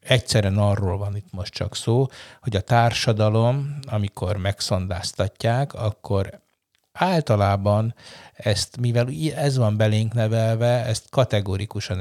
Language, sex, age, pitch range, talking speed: Hungarian, male, 60-79, 100-115 Hz, 110 wpm